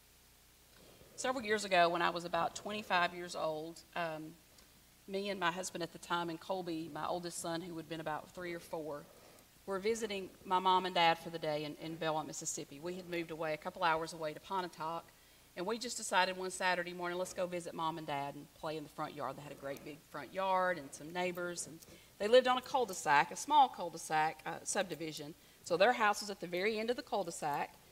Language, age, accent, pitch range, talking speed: English, 40-59, American, 160-195 Hz, 220 wpm